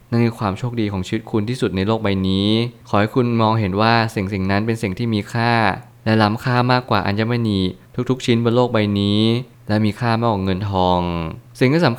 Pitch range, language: 95-120 Hz, Thai